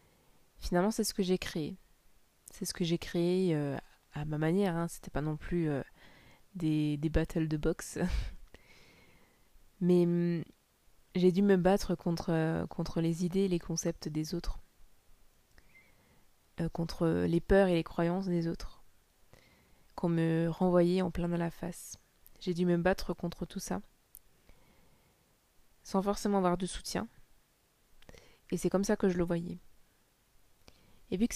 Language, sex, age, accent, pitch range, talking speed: French, female, 20-39, French, 165-185 Hz, 150 wpm